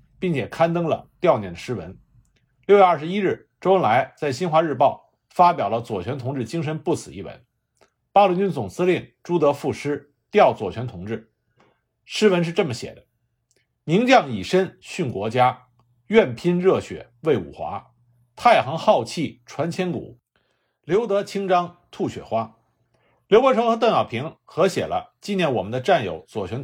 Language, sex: Chinese, male